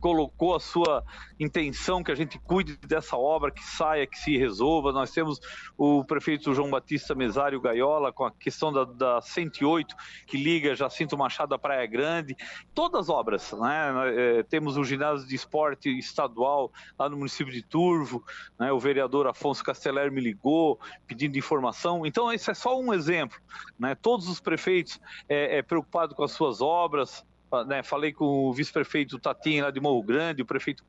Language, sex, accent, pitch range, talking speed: Portuguese, male, Brazilian, 140-180 Hz, 175 wpm